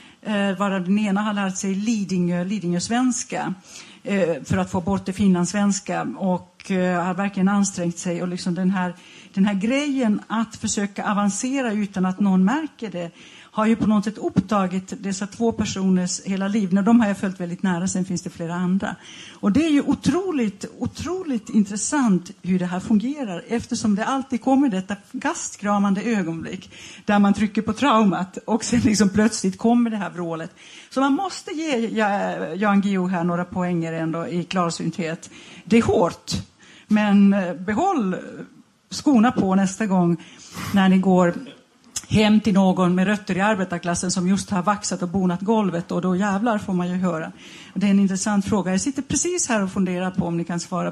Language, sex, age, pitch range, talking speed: Swedish, female, 60-79, 180-220 Hz, 180 wpm